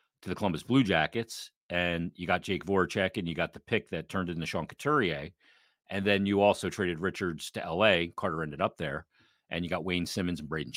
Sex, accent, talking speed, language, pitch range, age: male, American, 215 wpm, English, 85-105 Hz, 40-59